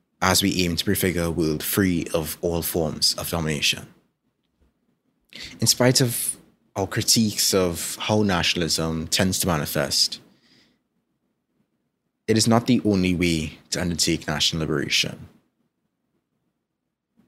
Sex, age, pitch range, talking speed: male, 20-39, 85-105 Hz, 120 wpm